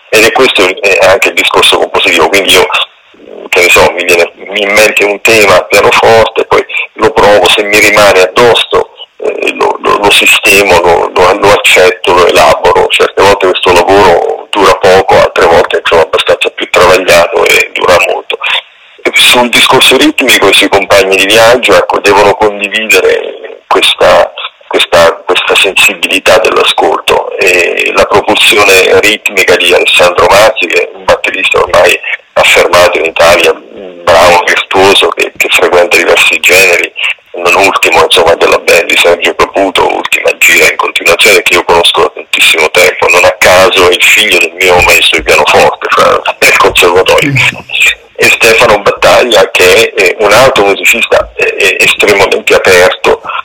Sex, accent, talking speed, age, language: male, native, 155 wpm, 40-59, Italian